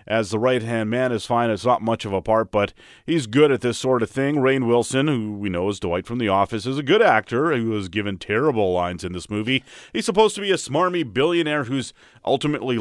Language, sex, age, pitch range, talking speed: English, male, 30-49, 105-130 Hz, 240 wpm